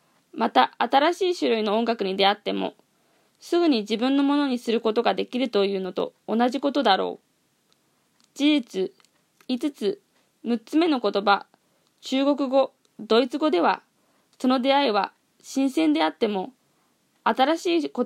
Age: 20-39